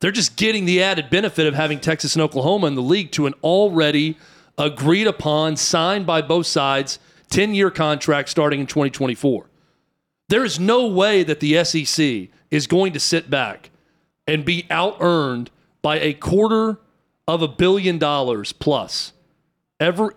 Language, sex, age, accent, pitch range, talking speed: English, male, 40-59, American, 150-180 Hz, 145 wpm